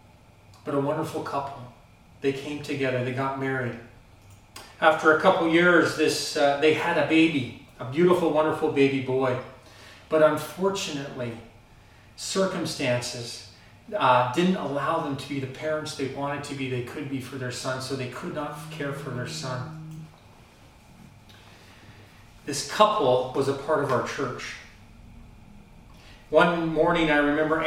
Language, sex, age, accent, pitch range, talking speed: English, male, 40-59, American, 120-160 Hz, 145 wpm